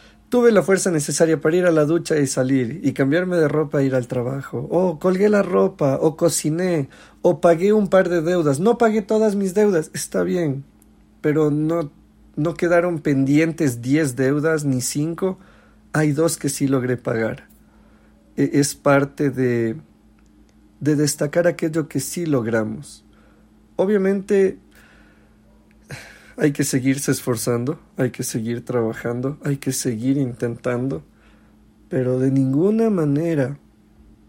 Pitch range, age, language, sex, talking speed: 130-180 Hz, 40-59, English, male, 140 wpm